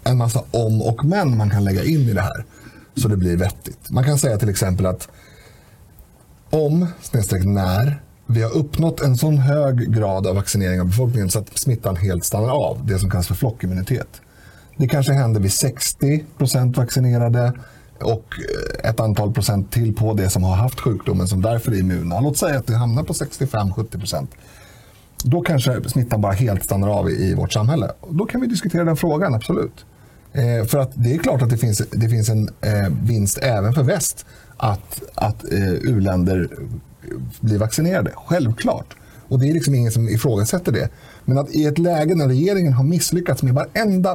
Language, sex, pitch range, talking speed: Swedish, male, 105-140 Hz, 180 wpm